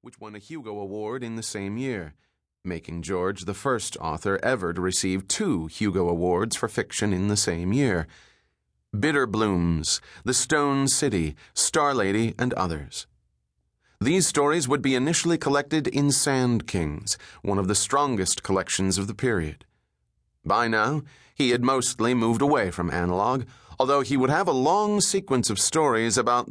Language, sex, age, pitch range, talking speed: English, male, 30-49, 95-125 Hz, 160 wpm